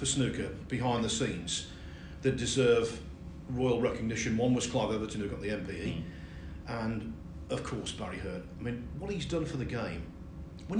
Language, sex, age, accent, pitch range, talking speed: English, male, 40-59, British, 95-150 Hz, 170 wpm